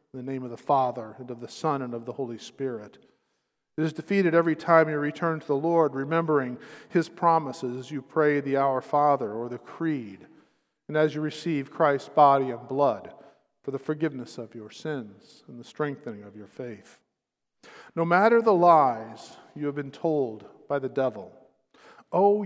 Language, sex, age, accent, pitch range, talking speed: English, male, 50-69, American, 130-165 Hz, 185 wpm